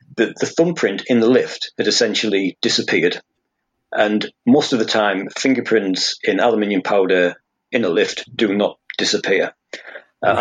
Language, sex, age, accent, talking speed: English, male, 40-59, British, 145 wpm